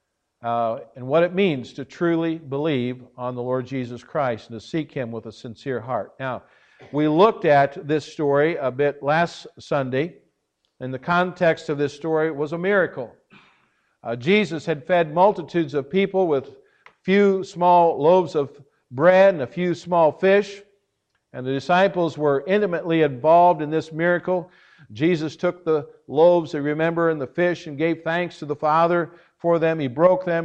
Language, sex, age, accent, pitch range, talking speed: English, male, 50-69, American, 135-170 Hz, 175 wpm